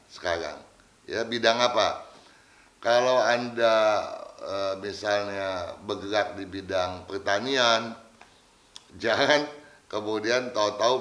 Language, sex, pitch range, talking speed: Indonesian, male, 95-120 Hz, 80 wpm